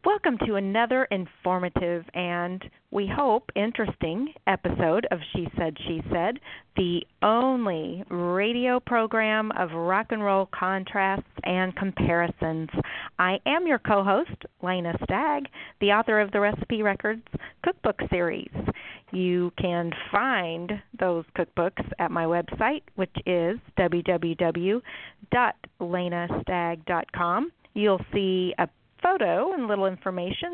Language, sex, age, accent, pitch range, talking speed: English, female, 40-59, American, 175-210 Hz, 110 wpm